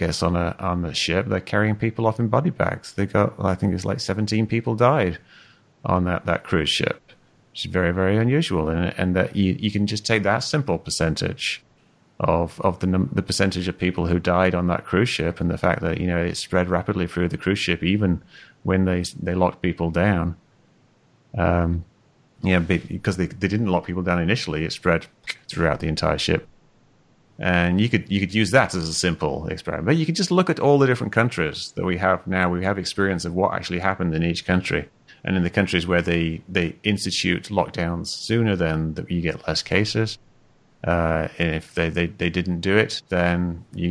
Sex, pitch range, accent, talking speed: male, 85-100 Hz, British, 210 wpm